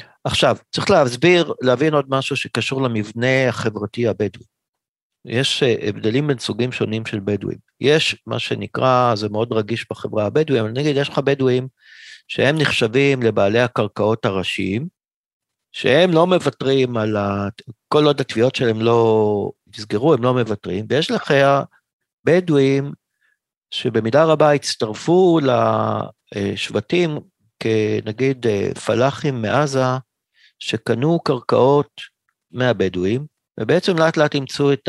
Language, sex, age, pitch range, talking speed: Hebrew, male, 50-69, 110-140 Hz, 115 wpm